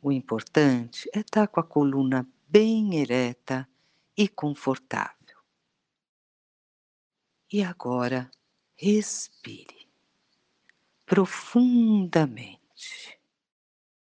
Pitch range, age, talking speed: 130-185 Hz, 50-69, 65 wpm